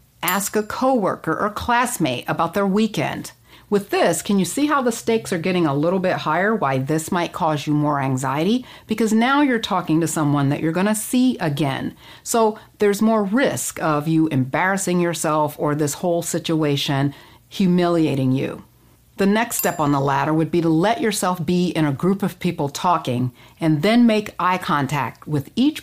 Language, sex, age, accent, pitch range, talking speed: English, female, 50-69, American, 155-210 Hz, 185 wpm